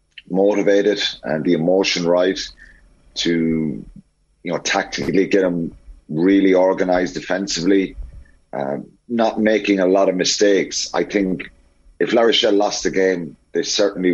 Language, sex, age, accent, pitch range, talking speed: English, male, 30-49, British, 85-100 Hz, 130 wpm